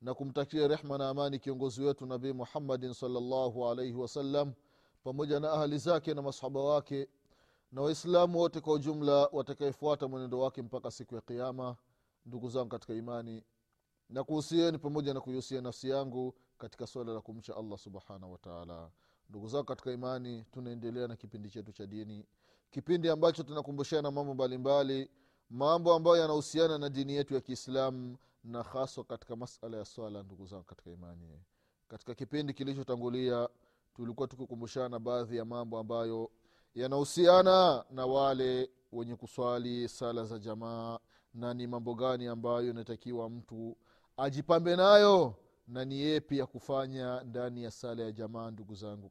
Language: Swahili